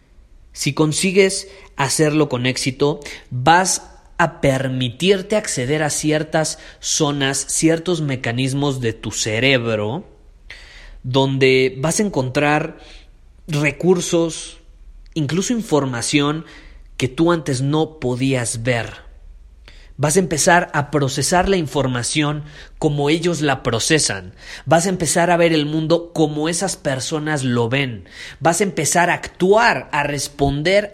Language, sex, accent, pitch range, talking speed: Spanish, male, Mexican, 125-160 Hz, 115 wpm